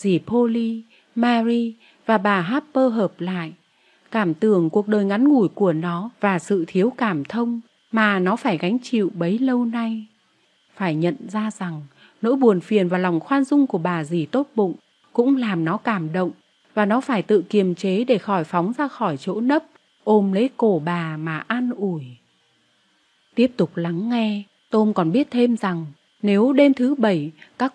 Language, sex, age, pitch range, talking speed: Vietnamese, female, 30-49, 180-235 Hz, 180 wpm